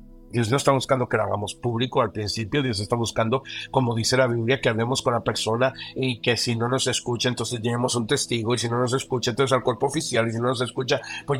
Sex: male